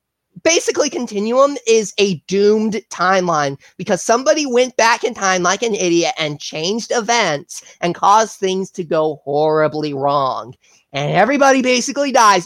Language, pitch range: English, 165-215 Hz